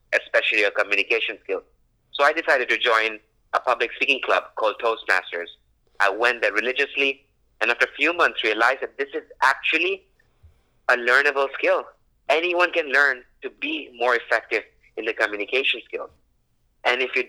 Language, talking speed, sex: English, 160 wpm, male